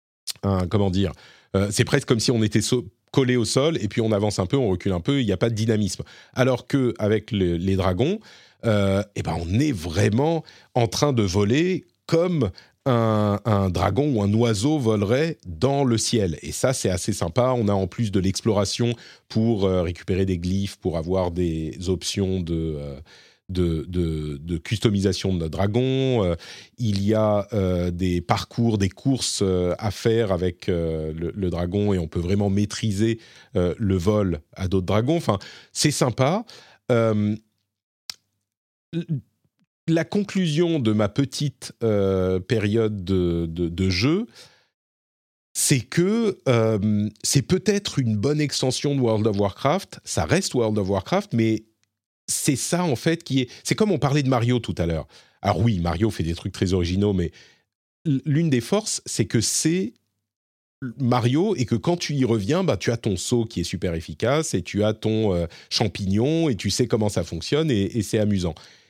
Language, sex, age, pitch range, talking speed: French, male, 40-59, 95-125 Hz, 180 wpm